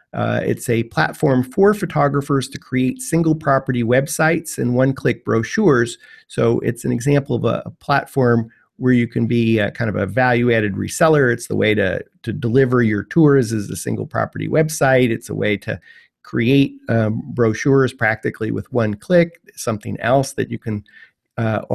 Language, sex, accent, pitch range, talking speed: English, male, American, 115-145 Hz, 180 wpm